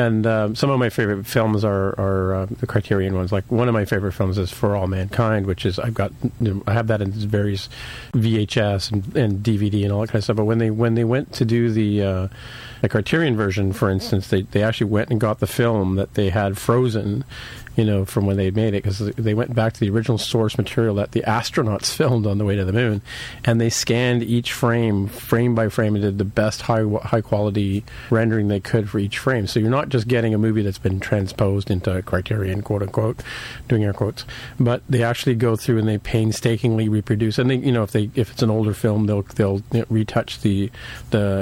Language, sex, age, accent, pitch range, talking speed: English, male, 40-59, American, 100-120 Hz, 230 wpm